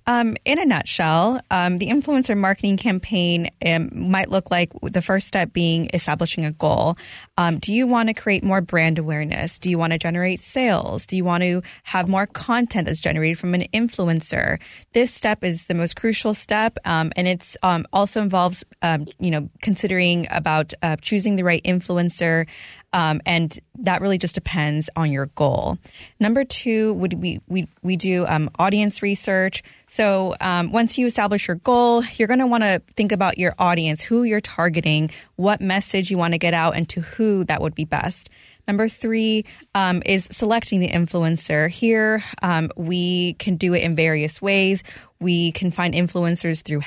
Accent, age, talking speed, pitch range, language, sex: American, 20-39, 180 wpm, 170-205 Hz, English, female